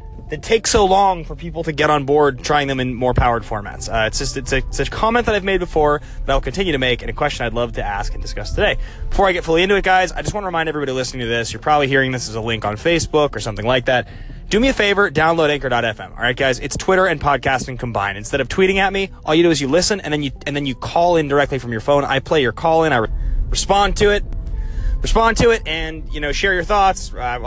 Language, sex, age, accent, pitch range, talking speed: English, male, 20-39, American, 125-175 Hz, 275 wpm